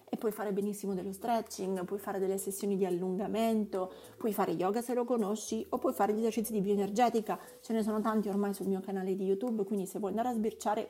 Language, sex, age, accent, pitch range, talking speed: Italian, female, 30-49, native, 195-245 Hz, 225 wpm